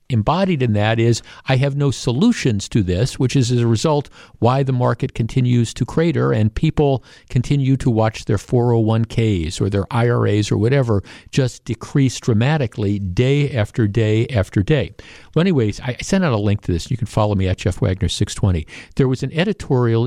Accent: American